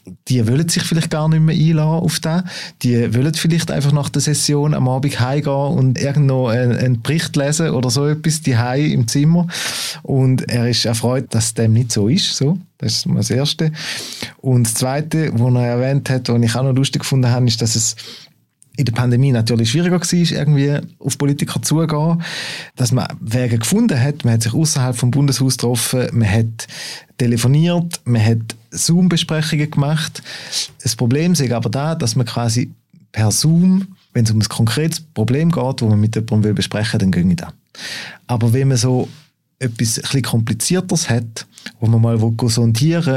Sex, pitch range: male, 120-155 Hz